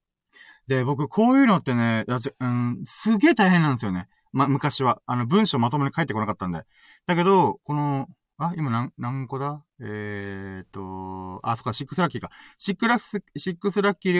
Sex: male